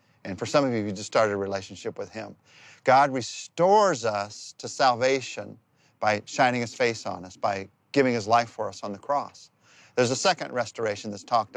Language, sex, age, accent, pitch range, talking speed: English, male, 40-59, American, 115-155 Hz, 195 wpm